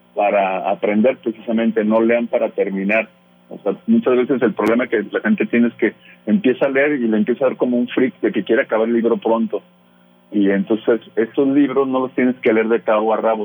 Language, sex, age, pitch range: Spanish, male, 40-59, 105-120 Hz